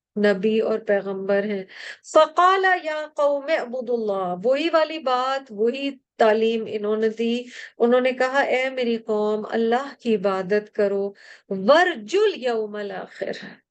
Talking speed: 130 wpm